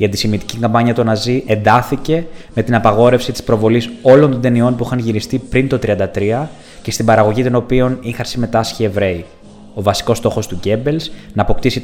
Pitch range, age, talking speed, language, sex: 105-125 Hz, 20-39, 175 wpm, Greek, male